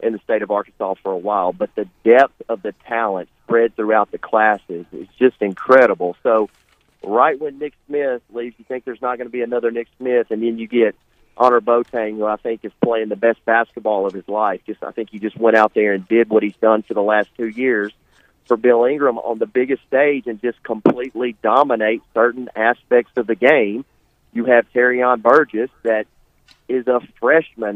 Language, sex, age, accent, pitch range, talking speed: English, male, 40-59, American, 110-135 Hz, 210 wpm